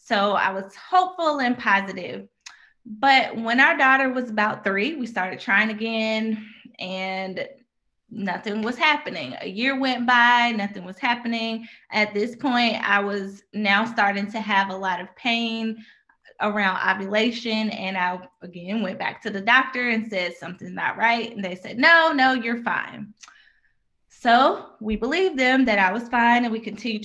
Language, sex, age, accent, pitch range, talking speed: English, female, 20-39, American, 200-230 Hz, 165 wpm